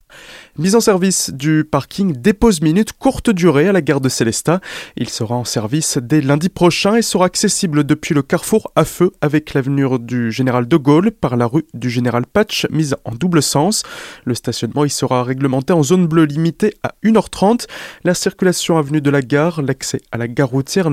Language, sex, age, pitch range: French, male, 20-39, 135-180 Hz